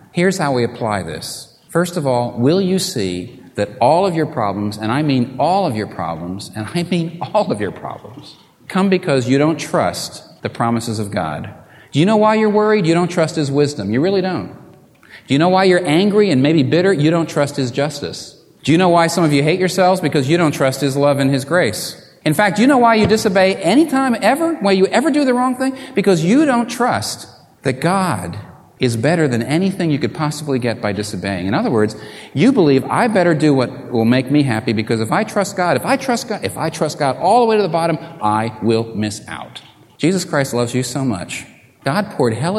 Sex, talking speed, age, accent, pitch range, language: male, 230 wpm, 40-59, American, 120-185 Hz, English